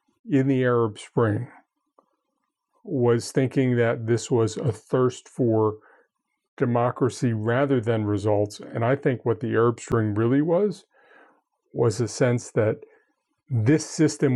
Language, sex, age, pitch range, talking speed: English, male, 40-59, 120-145 Hz, 130 wpm